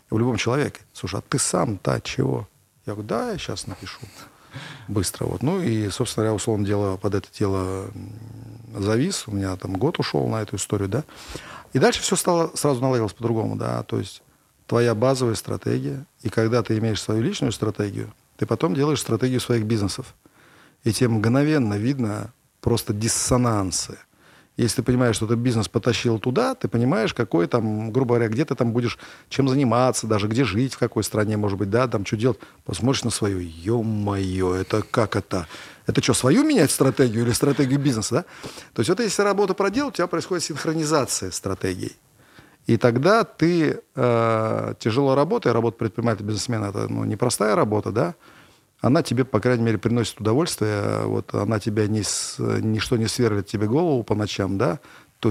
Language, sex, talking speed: Russian, male, 175 wpm